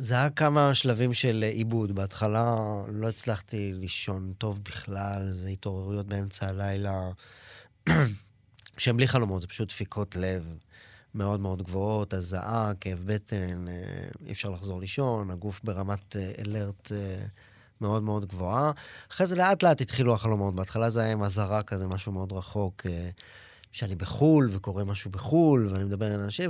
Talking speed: 150 wpm